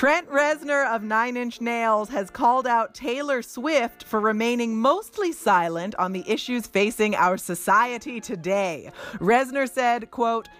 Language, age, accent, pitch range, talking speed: English, 30-49, American, 190-270 Hz, 140 wpm